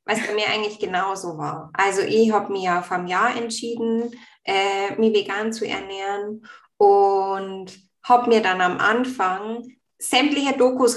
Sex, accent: female, German